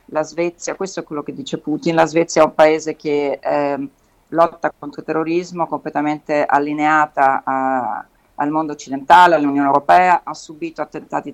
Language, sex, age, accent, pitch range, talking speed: Italian, female, 40-59, native, 150-185 Hz, 155 wpm